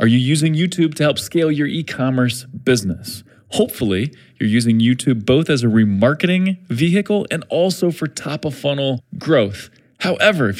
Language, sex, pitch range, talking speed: English, male, 115-150 Hz, 145 wpm